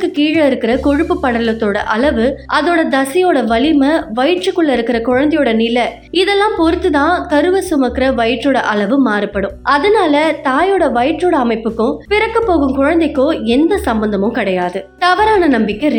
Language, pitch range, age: Tamil, 240-355 Hz, 20-39